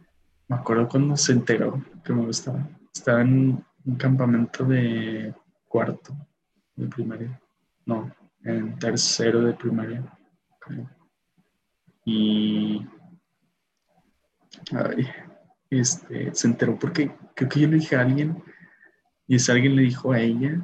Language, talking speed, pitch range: Spanish, 120 wpm, 115-140 Hz